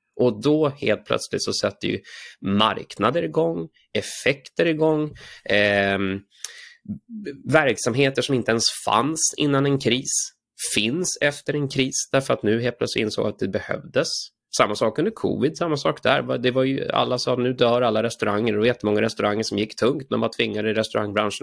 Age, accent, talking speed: 20-39, native, 170 wpm